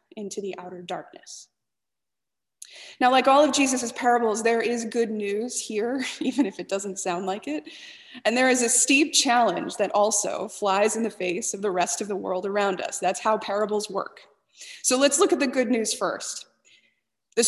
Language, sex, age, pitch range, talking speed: English, female, 20-39, 210-255 Hz, 190 wpm